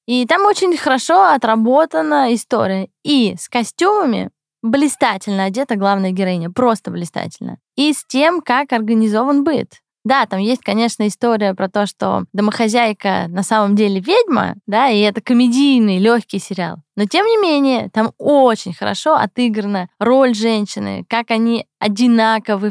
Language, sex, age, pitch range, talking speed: Russian, female, 20-39, 205-250 Hz, 140 wpm